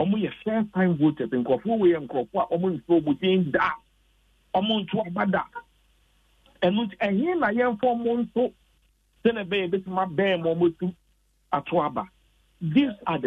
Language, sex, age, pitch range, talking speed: English, male, 60-79, 145-215 Hz, 55 wpm